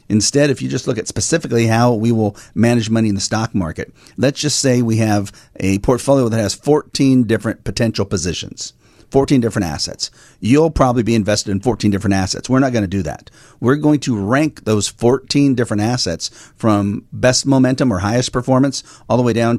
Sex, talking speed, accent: male, 195 wpm, American